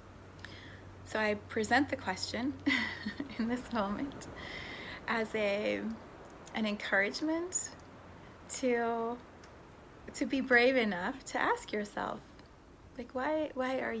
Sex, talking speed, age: female, 105 wpm, 30-49